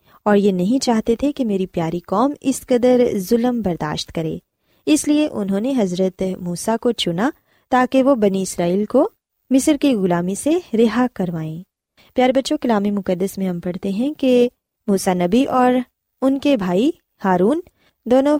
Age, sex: 20-39, female